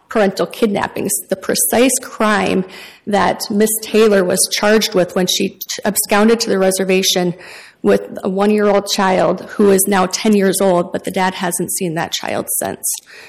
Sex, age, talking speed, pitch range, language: female, 30-49, 160 wpm, 190-220 Hz, English